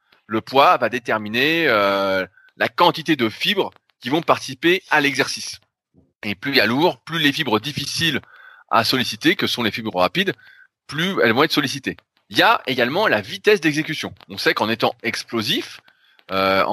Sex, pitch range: male, 110-165 Hz